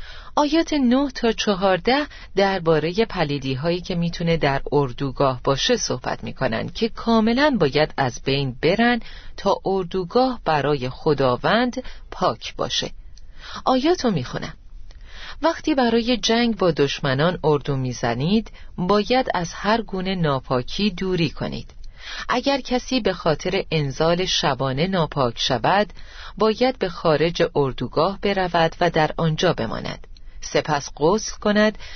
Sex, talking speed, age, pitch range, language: female, 120 wpm, 40-59, 145-215 Hz, Persian